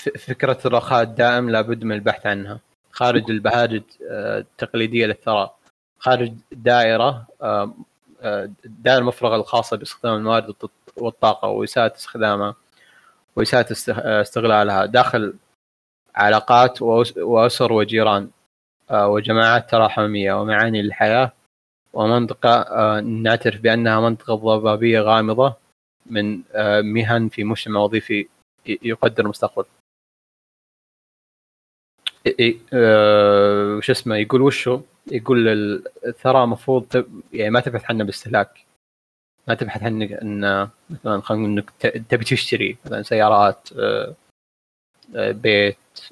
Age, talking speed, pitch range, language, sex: 20-39, 90 wpm, 105-120 Hz, Arabic, male